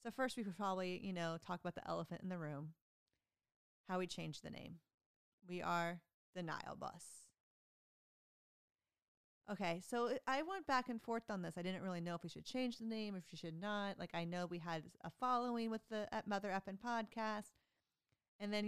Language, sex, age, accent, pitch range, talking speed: English, female, 30-49, American, 170-220 Hz, 205 wpm